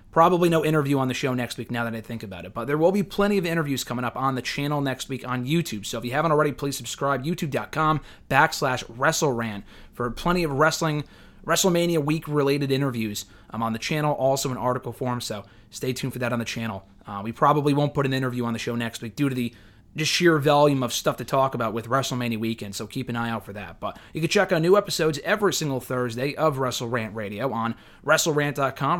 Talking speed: 230 wpm